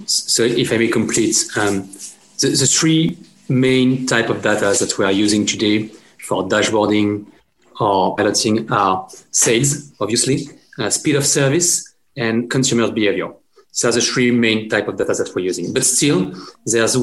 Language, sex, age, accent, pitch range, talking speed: English, male, 30-49, French, 110-140 Hz, 160 wpm